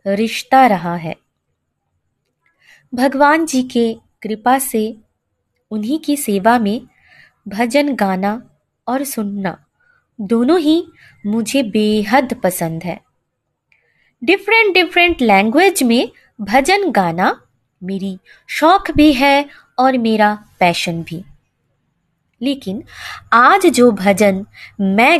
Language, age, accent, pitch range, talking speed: Hindi, 20-39, native, 195-285 Hz, 100 wpm